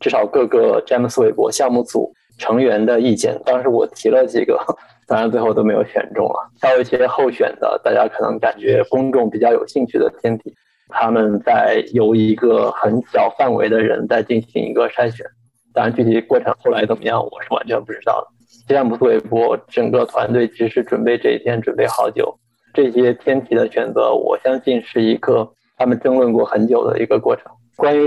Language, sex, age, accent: Chinese, male, 20-39, native